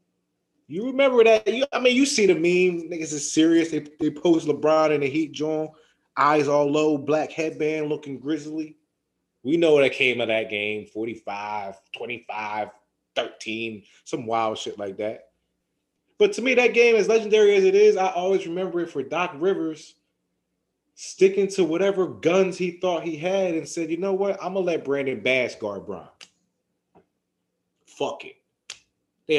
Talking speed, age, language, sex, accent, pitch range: 175 wpm, 20-39, English, male, American, 140-225 Hz